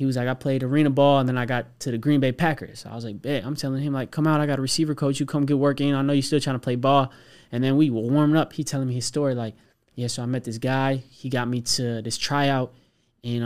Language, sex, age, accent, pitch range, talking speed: English, male, 20-39, American, 120-140 Hz, 300 wpm